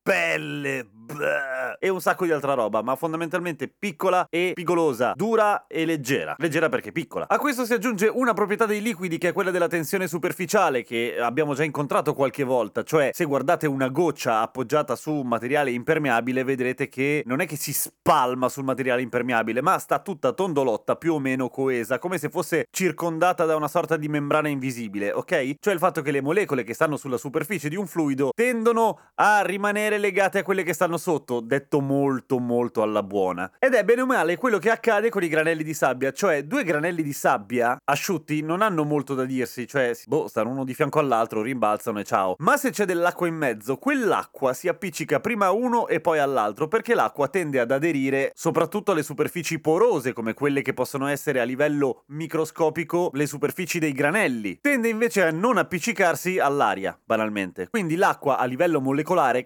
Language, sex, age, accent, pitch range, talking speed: Italian, male, 30-49, native, 130-180 Hz, 190 wpm